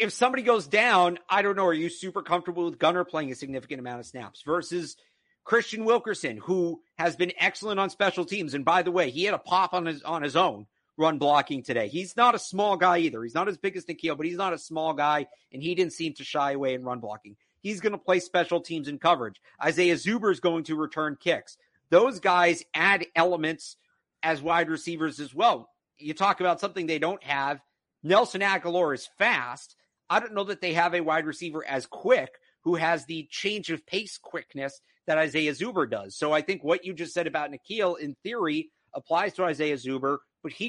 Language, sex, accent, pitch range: English, male, American, 150-185 Hz